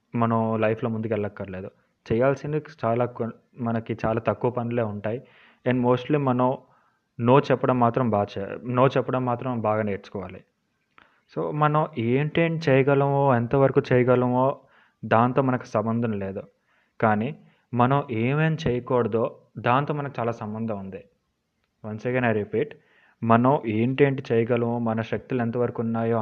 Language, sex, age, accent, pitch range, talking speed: Telugu, male, 20-39, native, 110-130 Hz, 125 wpm